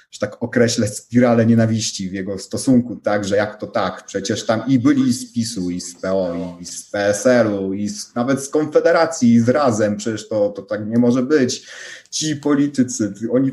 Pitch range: 110-160 Hz